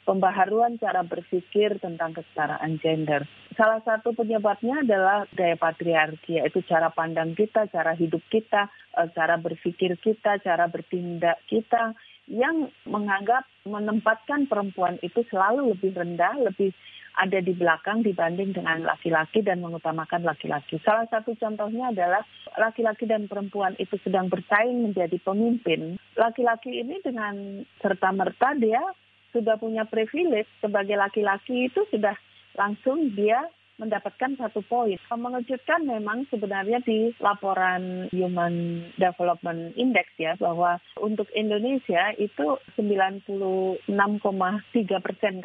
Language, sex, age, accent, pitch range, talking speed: Indonesian, female, 40-59, native, 180-230 Hz, 115 wpm